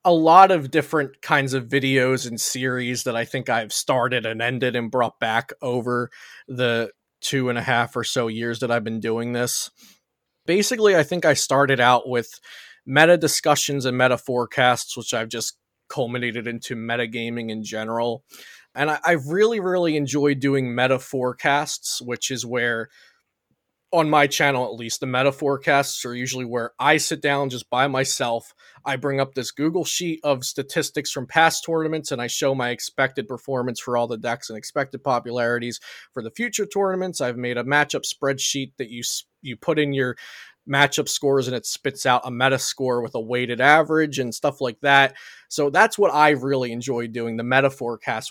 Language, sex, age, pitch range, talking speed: English, male, 20-39, 120-145 Hz, 185 wpm